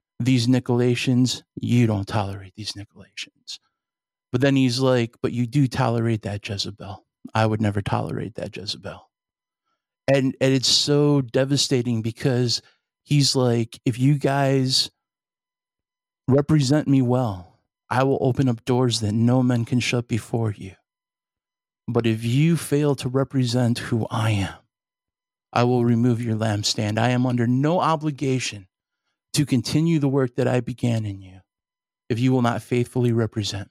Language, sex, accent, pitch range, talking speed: English, male, American, 115-135 Hz, 150 wpm